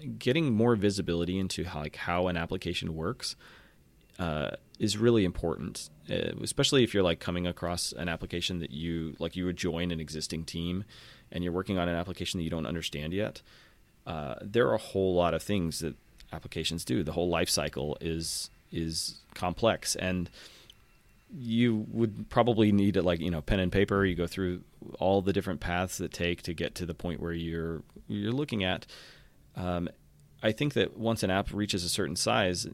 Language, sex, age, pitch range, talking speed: English, male, 30-49, 85-105 Hz, 185 wpm